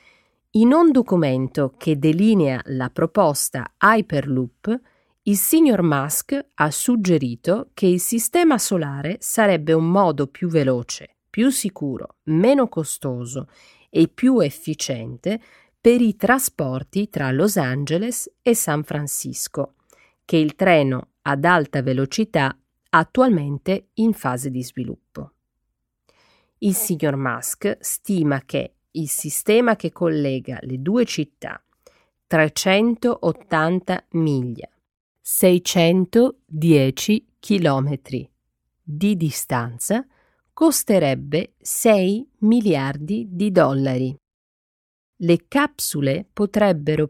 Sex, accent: female, native